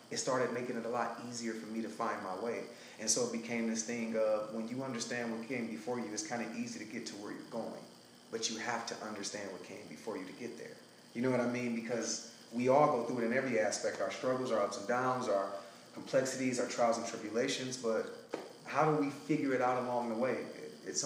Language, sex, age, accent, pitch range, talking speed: English, male, 30-49, American, 110-120 Hz, 245 wpm